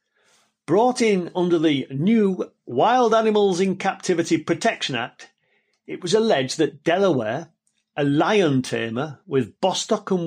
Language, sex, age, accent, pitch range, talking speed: English, male, 40-59, British, 135-205 Hz, 130 wpm